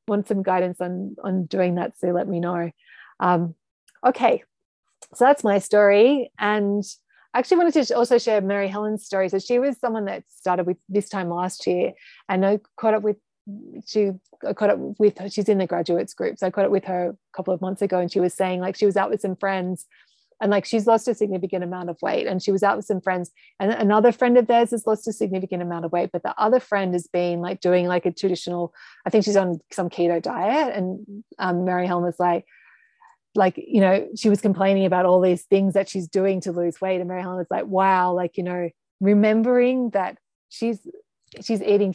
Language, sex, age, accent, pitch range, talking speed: English, female, 30-49, Australian, 180-215 Hz, 220 wpm